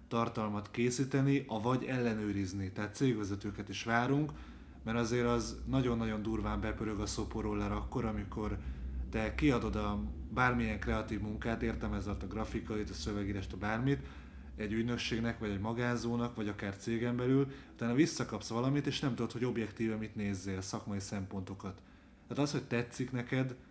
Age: 30-49